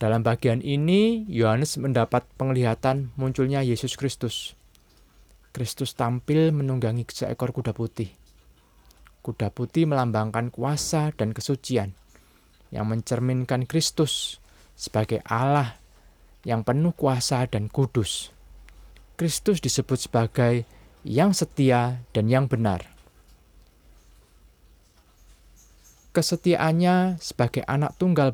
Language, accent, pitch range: Indonesian, native, 105-140 Hz